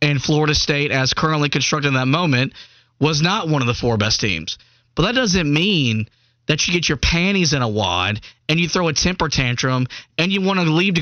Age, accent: 20-39, American